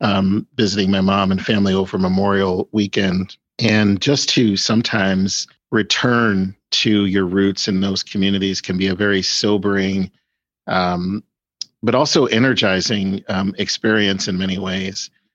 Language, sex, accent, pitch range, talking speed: English, male, American, 95-110 Hz, 135 wpm